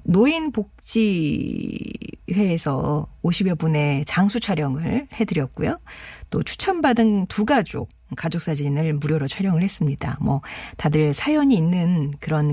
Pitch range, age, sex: 155-220 Hz, 40-59, female